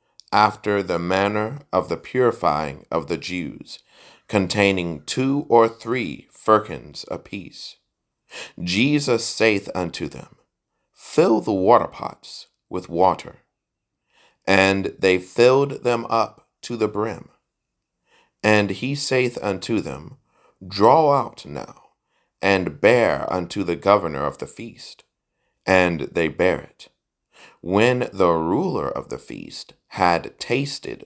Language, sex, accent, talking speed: English, male, American, 115 wpm